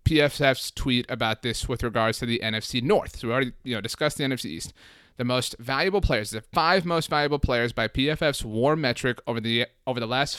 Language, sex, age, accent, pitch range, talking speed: English, male, 30-49, American, 110-135 Hz, 215 wpm